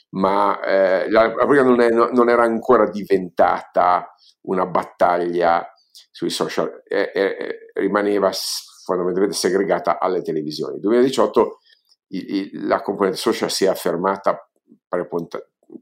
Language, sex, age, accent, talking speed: Italian, male, 50-69, native, 130 wpm